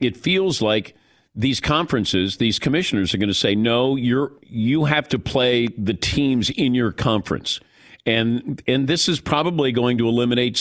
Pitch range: 110-145 Hz